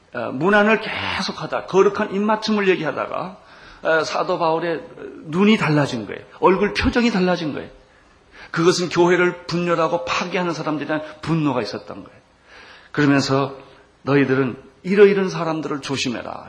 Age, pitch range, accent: 40-59, 140-185 Hz, native